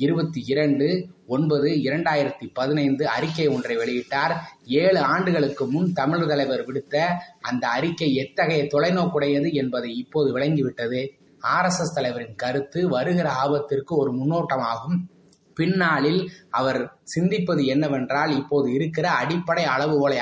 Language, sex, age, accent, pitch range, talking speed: Tamil, male, 20-39, native, 135-165 Hz, 115 wpm